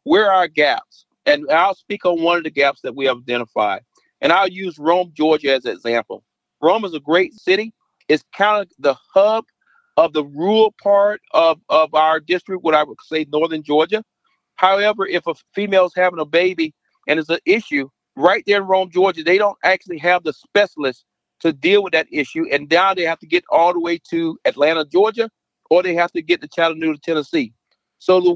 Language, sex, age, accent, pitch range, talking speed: English, male, 40-59, American, 160-205 Hz, 205 wpm